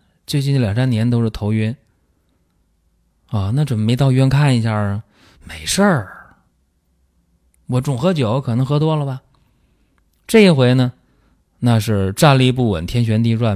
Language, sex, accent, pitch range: Chinese, male, native, 90-125 Hz